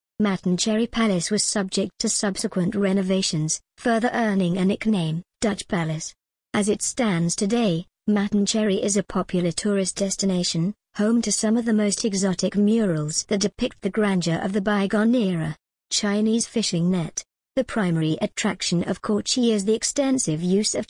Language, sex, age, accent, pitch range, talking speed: English, male, 50-69, British, 185-215 Hz, 150 wpm